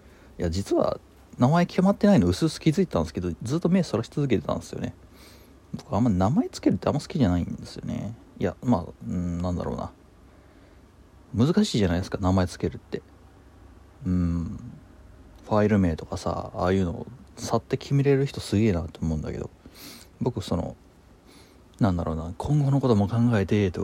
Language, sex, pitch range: Japanese, male, 85-115 Hz